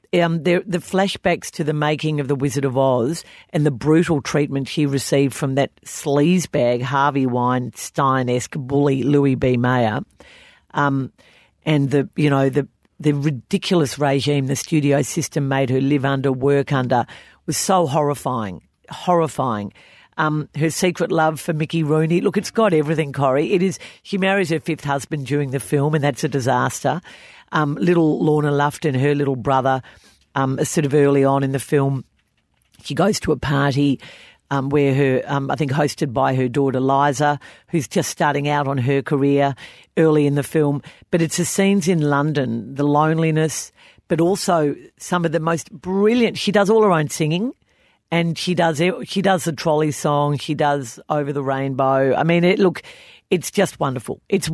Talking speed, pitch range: 175 wpm, 140-170 Hz